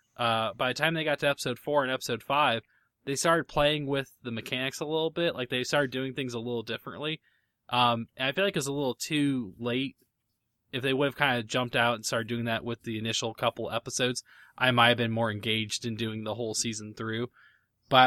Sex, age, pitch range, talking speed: male, 20-39, 115-140 Hz, 230 wpm